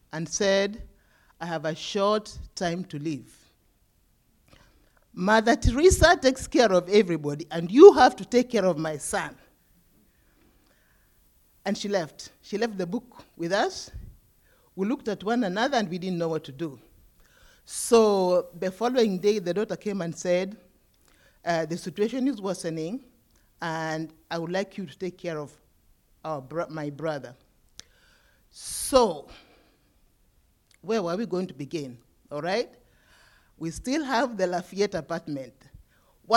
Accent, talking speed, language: Nigerian, 140 wpm, English